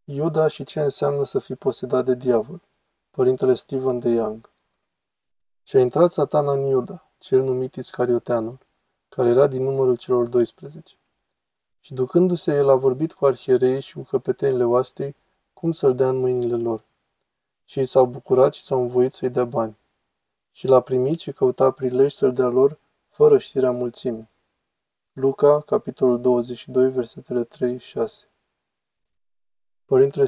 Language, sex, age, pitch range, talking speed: Romanian, male, 20-39, 125-160 Hz, 145 wpm